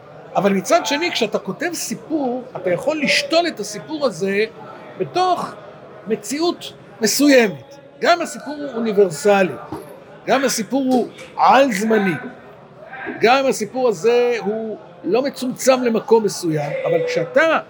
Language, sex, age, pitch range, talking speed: Hebrew, male, 50-69, 200-265 Hz, 120 wpm